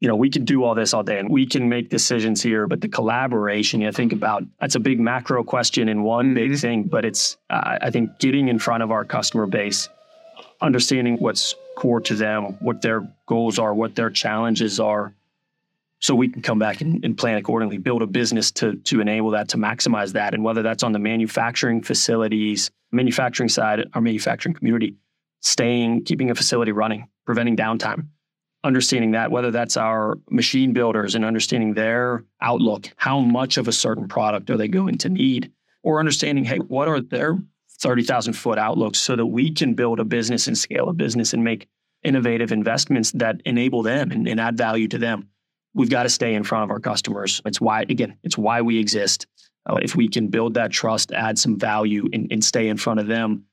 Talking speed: 205 wpm